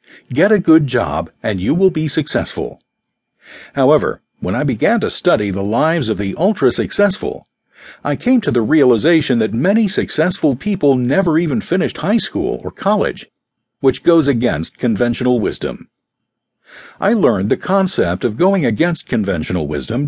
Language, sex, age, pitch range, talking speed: English, male, 50-69, 120-180 Hz, 150 wpm